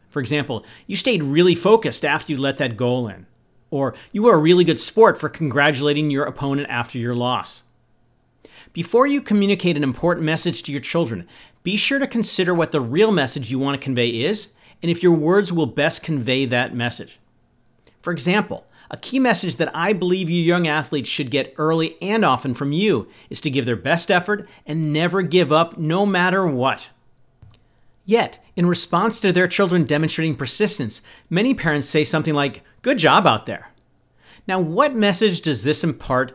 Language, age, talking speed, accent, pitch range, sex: English, 50-69, 180 wpm, American, 135-180 Hz, male